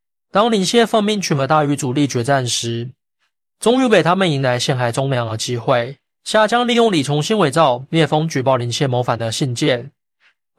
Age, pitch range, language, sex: 20-39, 125-170 Hz, Chinese, male